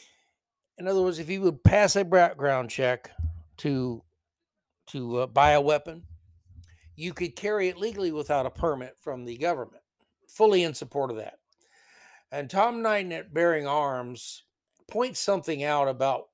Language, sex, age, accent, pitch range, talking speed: English, male, 60-79, American, 130-185 Hz, 155 wpm